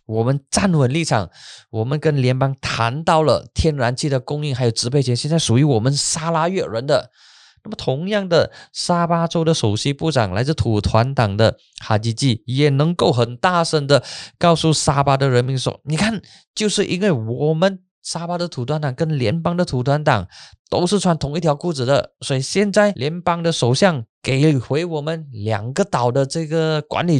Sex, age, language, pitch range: male, 20-39, Chinese, 115-165 Hz